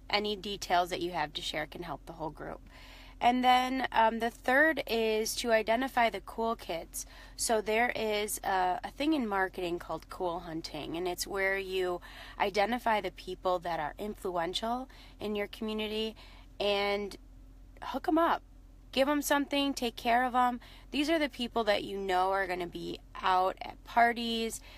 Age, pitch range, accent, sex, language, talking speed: 20-39, 175-225 Hz, American, female, English, 175 wpm